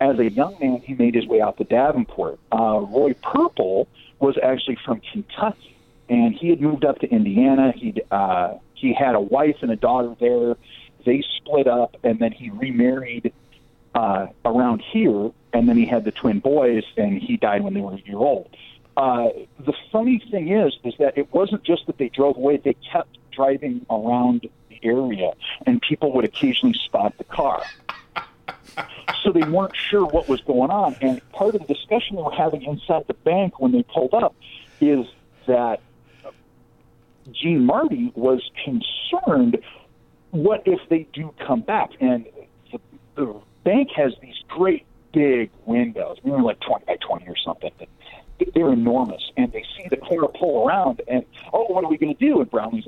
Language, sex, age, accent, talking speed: English, male, 50-69, American, 180 wpm